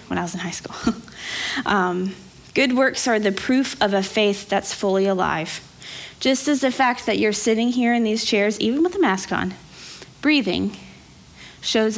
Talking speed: 180 wpm